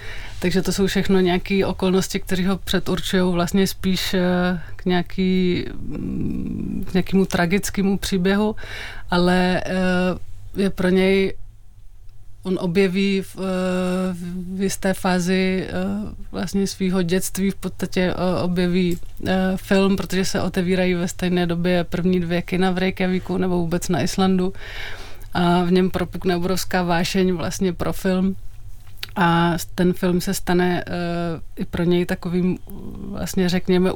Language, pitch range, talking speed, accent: Czech, 175-190 Hz, 120 wpm, native